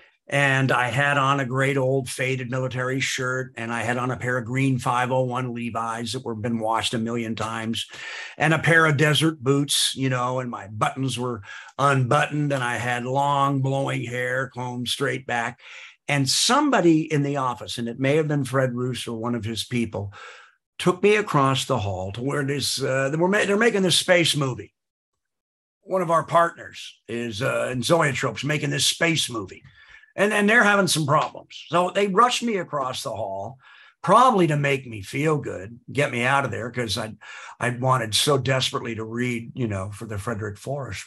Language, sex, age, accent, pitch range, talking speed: English, male, 50-69, American, 120-145 Hz, 185 wpm